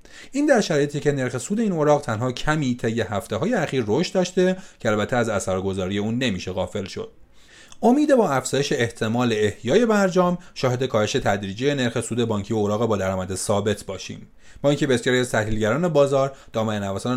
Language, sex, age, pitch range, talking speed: Persian, male, 30-49, 105-140 Hz, 170 wpm